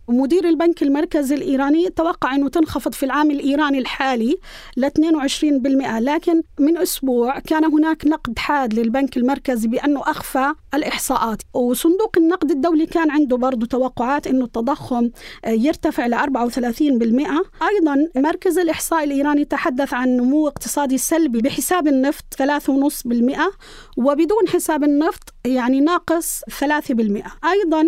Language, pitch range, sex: Arabic, 255-315 Hz, female